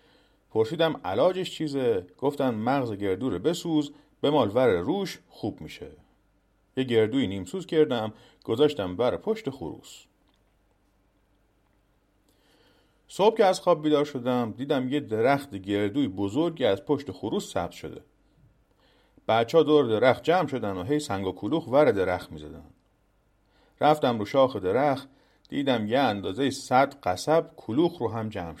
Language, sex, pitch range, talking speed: Persian, male, 100-145 Hz, 135 wpm